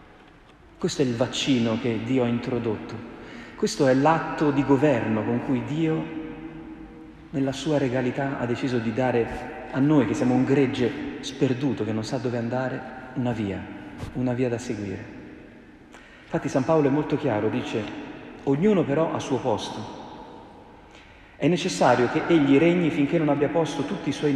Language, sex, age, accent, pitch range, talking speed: Italian, male, 40-59, native, 120-150 Hz, 160 wpm